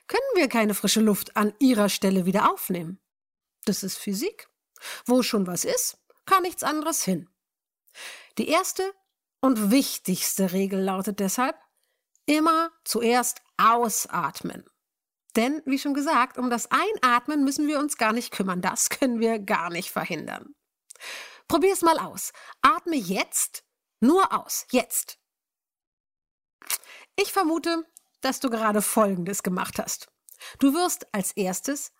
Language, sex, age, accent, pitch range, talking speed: German, female, 50-69, German, 195-295 Hz, 130 wpm